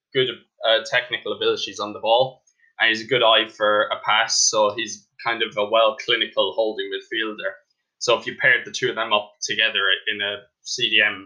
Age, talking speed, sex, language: 10-29, 195 wpm, male, English